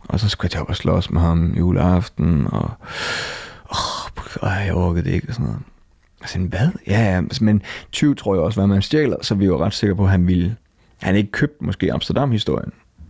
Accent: native